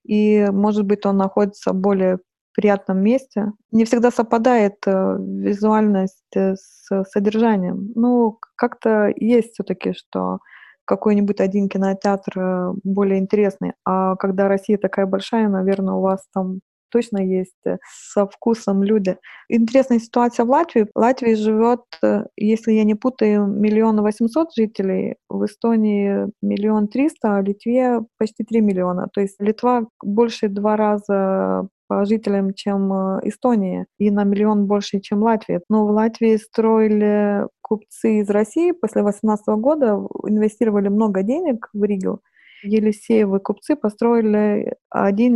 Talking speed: 130 wpm